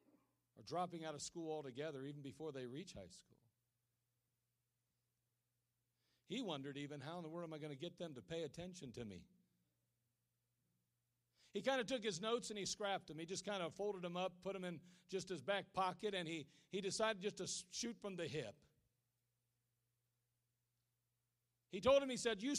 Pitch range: 120-200 Hz